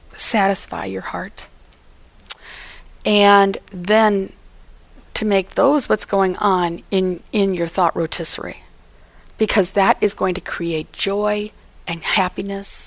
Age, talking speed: 40-59, 115 wpm